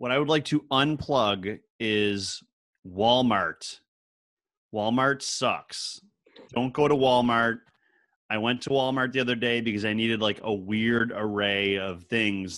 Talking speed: 145 wpm